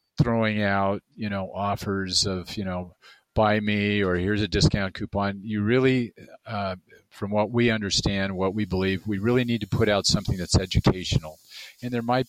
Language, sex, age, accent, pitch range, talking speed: English, male, 40-59, American, 90-105 Hz, 180 wpm